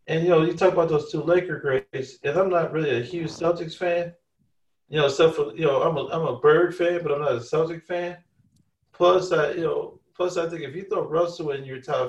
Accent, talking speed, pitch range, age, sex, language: American, 250 wpm, 130-175 Hz, 40-59, male, English